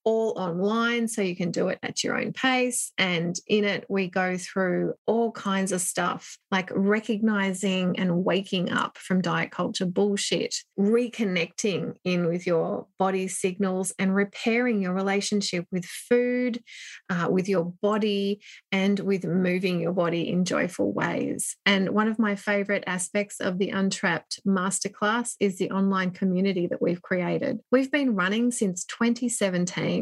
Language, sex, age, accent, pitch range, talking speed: English, female, 30-49, Australian, 185-225 Hz, 150 wpm